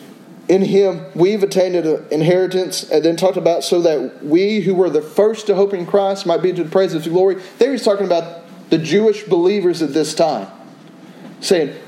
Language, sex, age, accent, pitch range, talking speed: English, male, 30-49, American, 175-220 Hz, 200 wpm